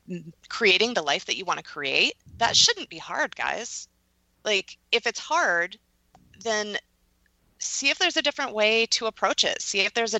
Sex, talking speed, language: female, 180 wpm, English